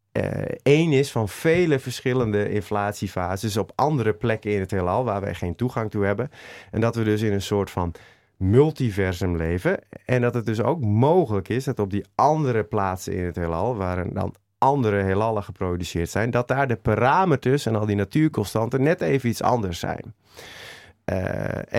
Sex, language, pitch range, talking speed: male, Dutch, 95-130 Hz, 175 wpm